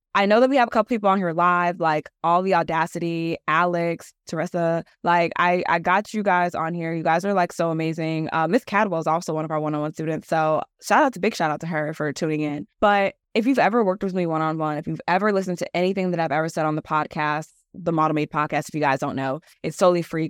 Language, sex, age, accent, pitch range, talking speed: English, female, 20-39, American, 155-190 Hz, 255 wpm